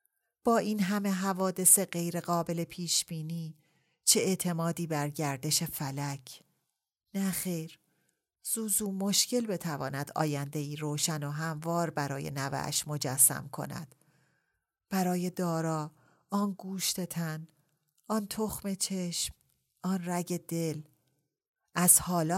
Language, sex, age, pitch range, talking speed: Persian, female, 30-49, 145-185 Hz, 105 wpm